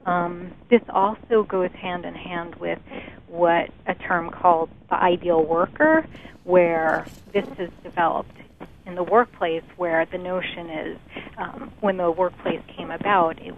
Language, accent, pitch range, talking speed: English, American, 170-195 Hz, 145 wpm